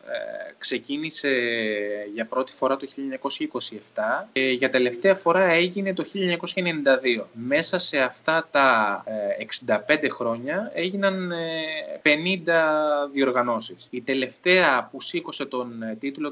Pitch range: 120-165 Hz